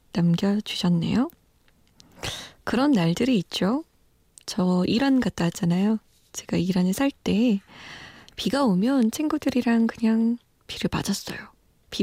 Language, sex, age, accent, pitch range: Korean, female, 20-39, native, 185-250 Hz